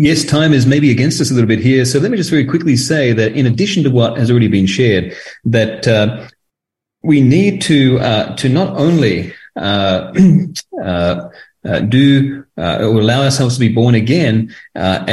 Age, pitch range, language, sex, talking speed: 30-49, 110-145 Hz, English, male, 185 wpm